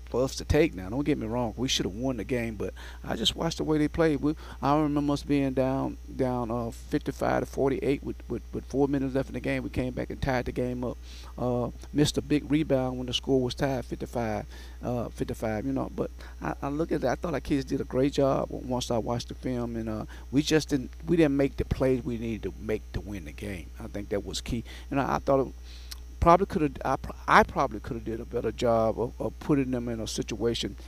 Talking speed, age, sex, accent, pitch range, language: 255 wpm, 40-59, male, American, 100-135 Hz, English